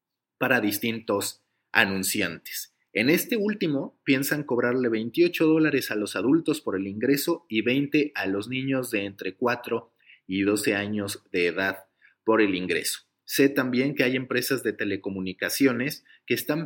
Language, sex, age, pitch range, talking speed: Spanish, male, 30-49, 105-135 Hz, 150 wpm